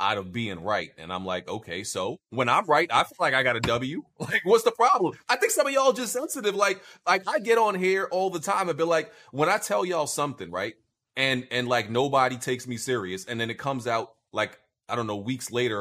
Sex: male